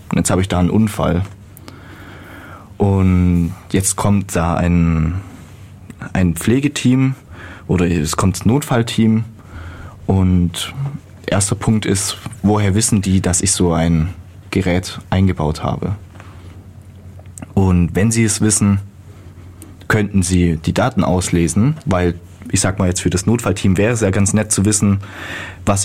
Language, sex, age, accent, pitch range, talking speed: German, male, 20-39, German, 90-105 Hz, 135 wpm